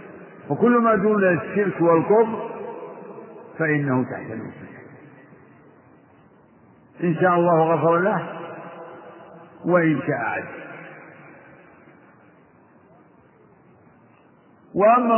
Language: Arabic